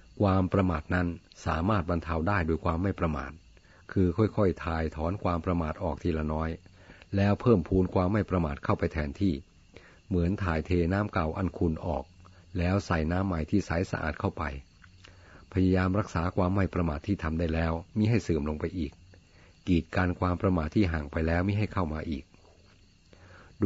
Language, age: Thai, 60-79